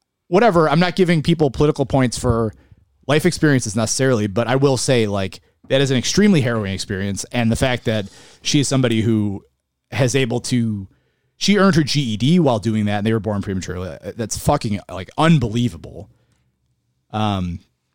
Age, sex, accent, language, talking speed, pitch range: 30-49, male, American, English, 165 wpm, 110-155 Hz